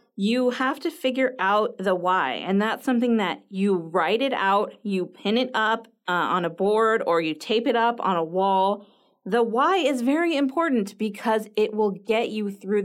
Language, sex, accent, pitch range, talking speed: English, female, American, 185-235 Hz, 195 wpm